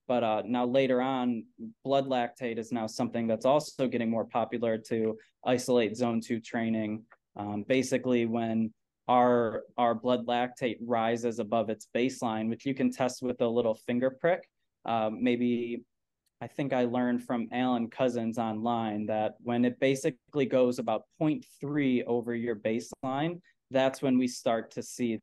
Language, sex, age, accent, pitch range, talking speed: English, male, 20-39, American, 115-125 Hz, 155 wpm